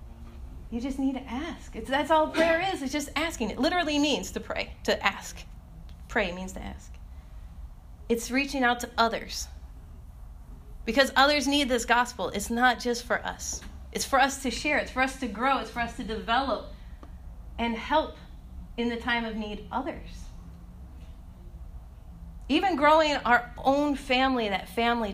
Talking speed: 160 wpm